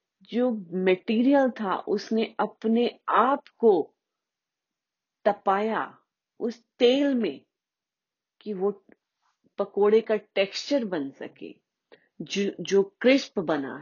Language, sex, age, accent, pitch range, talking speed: Hindi, female, 40-59, native, 175-230 Hz, 95 wpm